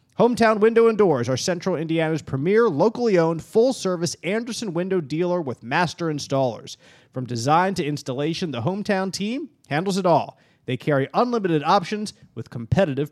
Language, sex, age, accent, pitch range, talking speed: English, male, 30-49, American, 140-180 Hz, 150 wpm